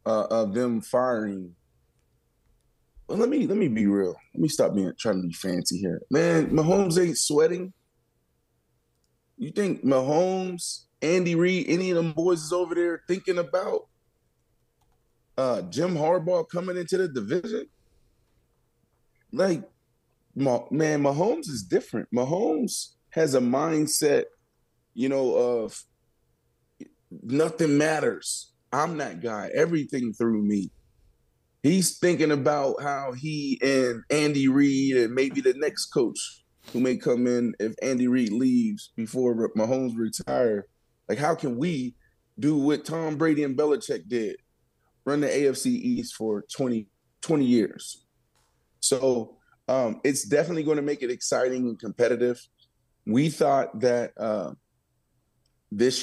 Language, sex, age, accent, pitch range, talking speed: English, male, 20-39, American, 120-165 Hz, 130 wpm